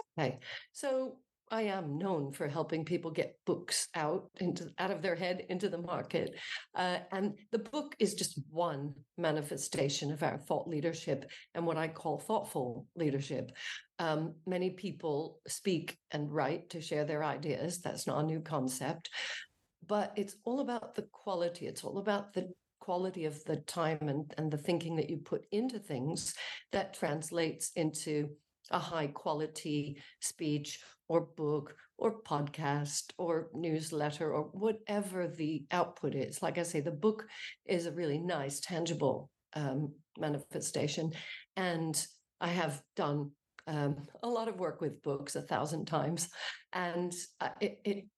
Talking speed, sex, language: 150 wpm, female, English